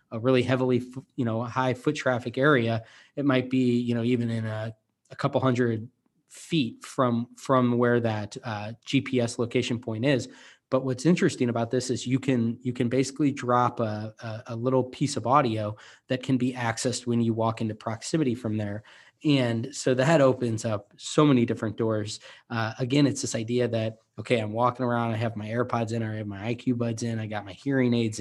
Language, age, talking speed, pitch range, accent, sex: English, 20-39, 205 wpm, 115-135 Hz, American, male